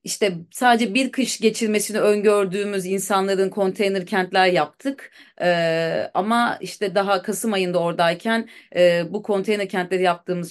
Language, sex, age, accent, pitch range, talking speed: Turkish, female, 30-49, native, 185-230 Hz, 125 wpm